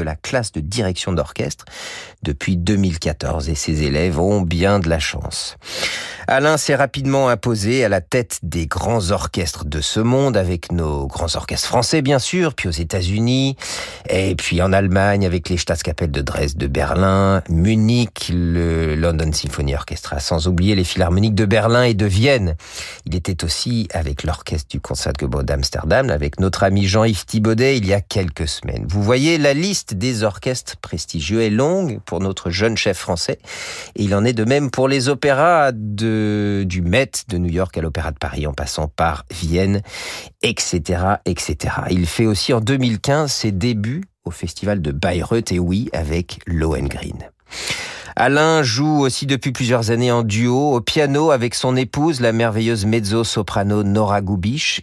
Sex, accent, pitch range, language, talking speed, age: male, French, 85-115 Hz, French, 170 wpm, 50-69